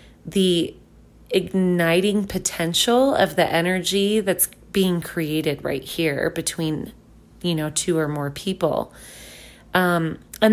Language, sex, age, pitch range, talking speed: English, female, 30-49, 165-195 Hz, 115 wpm